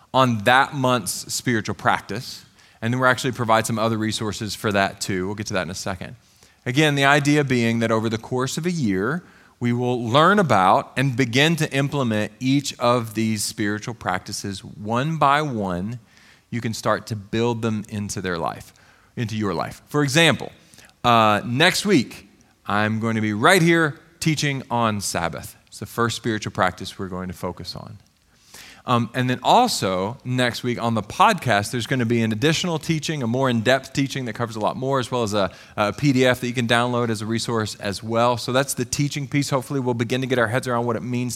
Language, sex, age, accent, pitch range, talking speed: English, male, 40-59, American, 105-140 Hz, 205 wpm